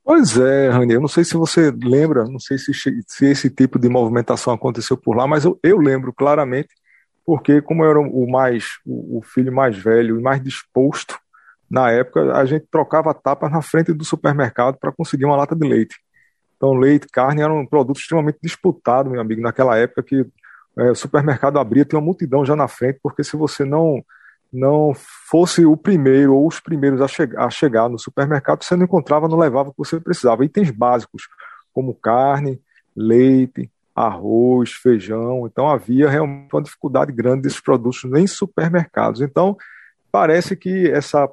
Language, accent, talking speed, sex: Portuguese, Brazilian, 180 wpm, male